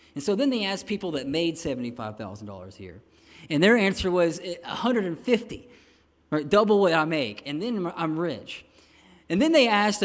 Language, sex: English, male